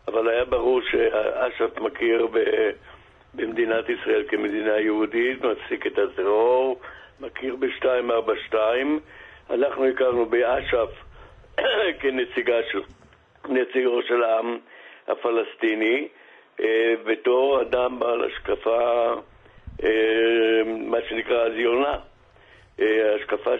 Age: 60-79